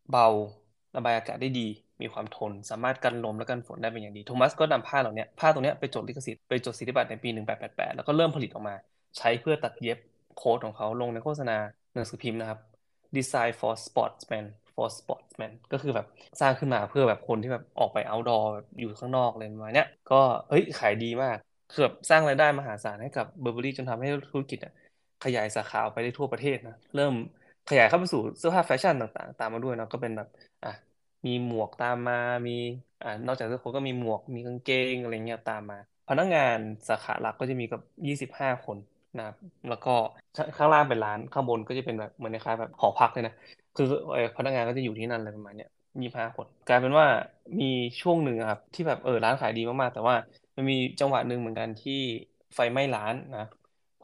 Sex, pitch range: male, 110-130 Hz